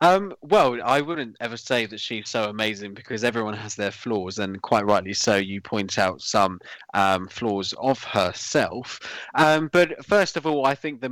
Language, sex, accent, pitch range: English, male, British, 110-150 Hz